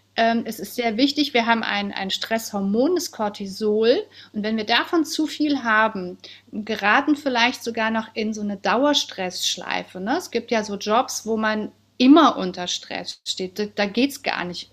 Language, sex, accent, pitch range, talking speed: German, female, German, 215-265 Hz, 175 wpm